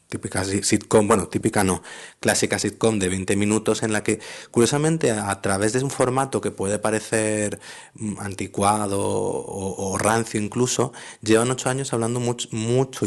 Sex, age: male, 30-49